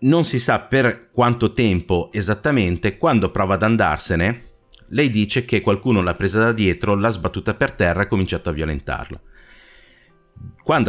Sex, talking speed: male, 160 wpm